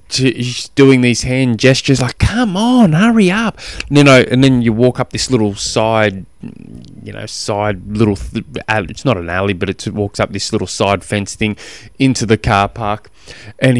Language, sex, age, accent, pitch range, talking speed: English, male, 20-39, Australian, 95-120 Hz, 185 wpm